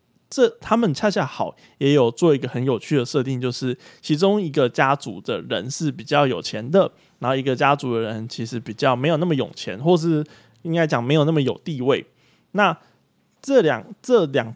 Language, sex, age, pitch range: Chinese, male, 20-39, 125-160 Hz